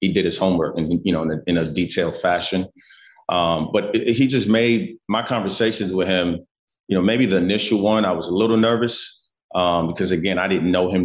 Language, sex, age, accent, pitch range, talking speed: English, male, 30-49, American, 85-95 Hz, 205 wpm